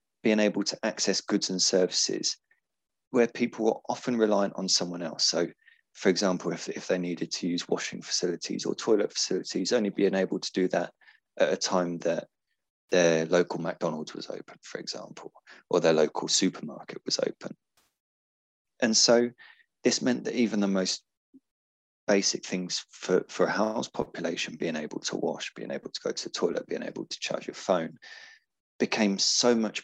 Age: 30-49